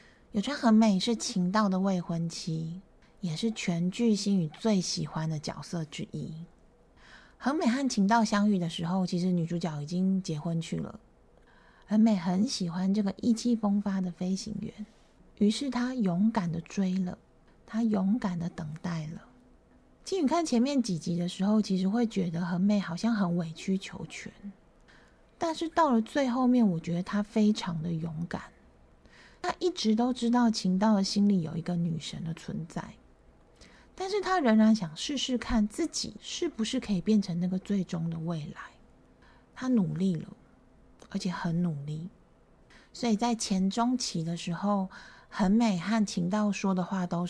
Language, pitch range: Chinese, 175-225 Hz